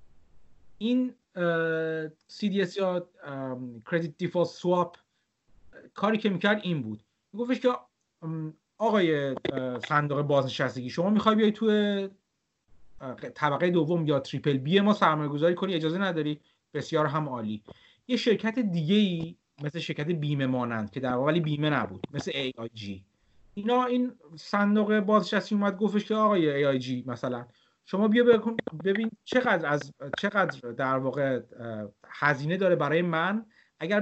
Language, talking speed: Persian, 130 wpm